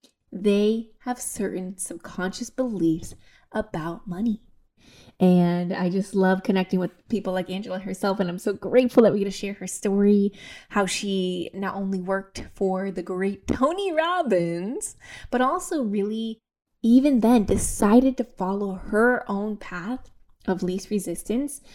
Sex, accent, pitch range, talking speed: female, American, 185-235 Hz, 145 wpm